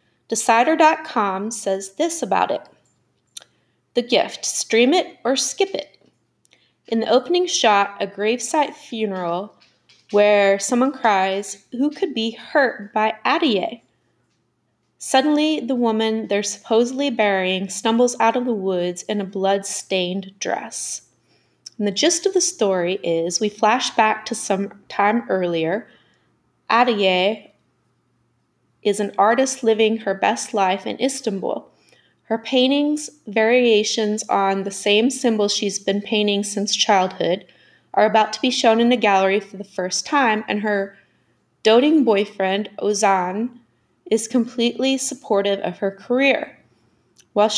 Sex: female